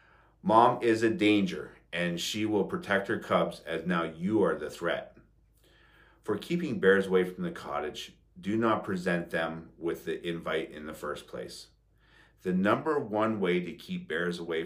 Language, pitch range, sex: English, 85-115 Hz, male